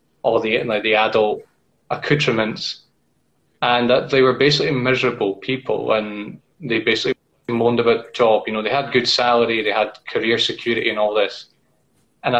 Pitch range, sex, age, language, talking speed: 110-130 Hz, male, 20-39, English, 160 wpm